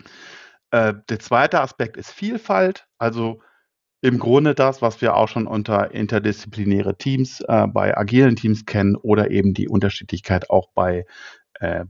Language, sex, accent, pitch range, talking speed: German, male, German, 110-130 Hz, 140 wpm